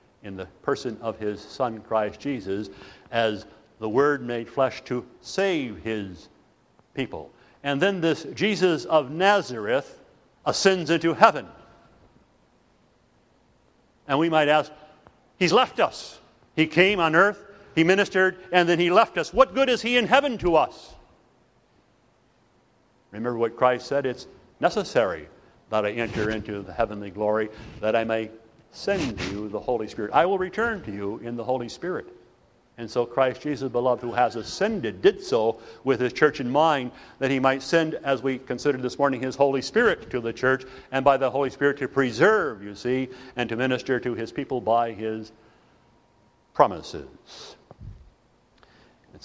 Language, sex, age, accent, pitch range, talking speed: English, male, 60-79, American, 110-150 Hz, 160 wpm